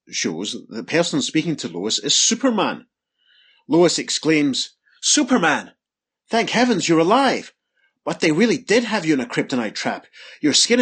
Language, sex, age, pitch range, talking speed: English, male, 30-49, 160-260 Hz, 150 wpm